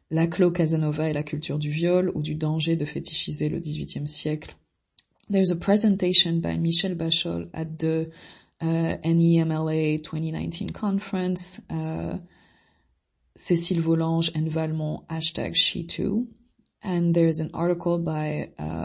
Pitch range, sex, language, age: 155-175 Hz, female, French, 20-39